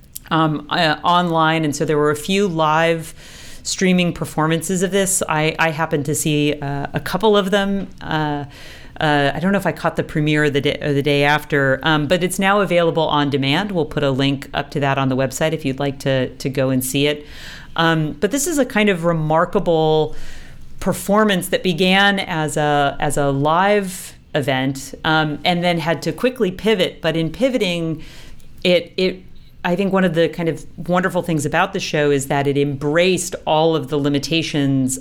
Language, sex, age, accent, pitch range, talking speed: English, female, 40-59, American, 145-170 Hz, 200 wpm